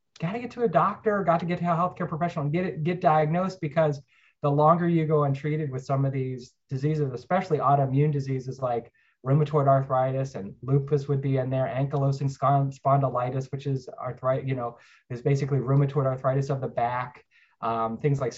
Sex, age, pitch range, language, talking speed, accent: male, 20-39, 130-155 Hz, English, 190 wpm, American